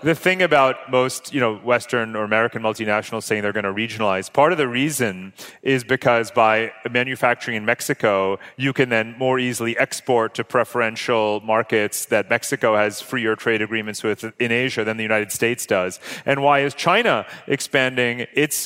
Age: 30-49